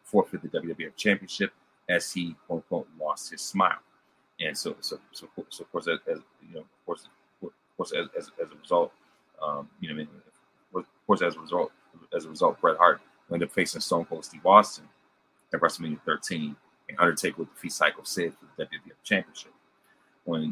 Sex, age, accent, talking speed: male, 30-49, American, 195 wpm